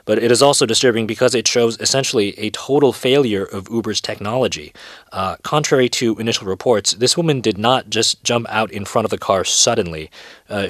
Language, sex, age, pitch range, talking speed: English, male, 30-49, 100-130 Hz, 190 wpm